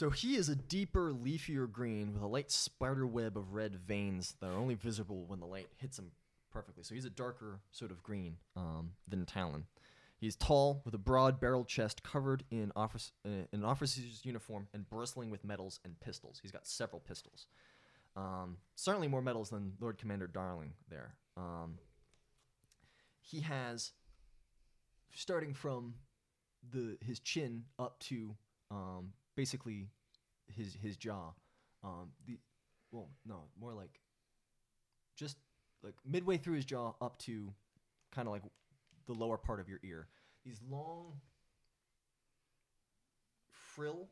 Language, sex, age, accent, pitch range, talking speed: English, male, 20-39, American, 105-135 Hz, 150 wpm